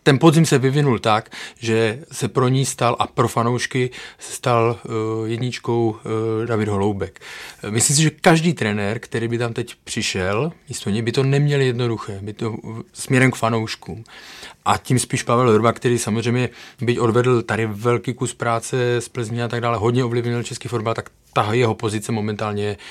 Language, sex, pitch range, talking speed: Czech, male, 110-125 Hz, 170 wpm